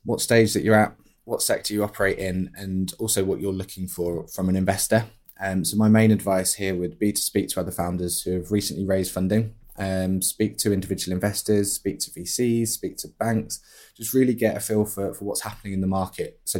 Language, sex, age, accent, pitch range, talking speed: English, male, 20-39, British, 90-110 Hz, 220 wpm